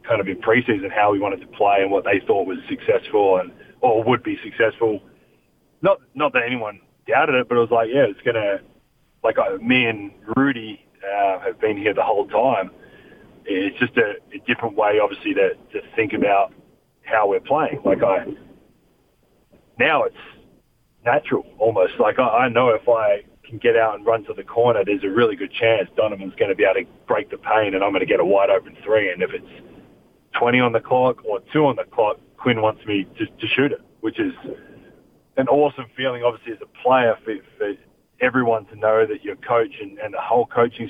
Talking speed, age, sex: 205 wpm, 30-49, male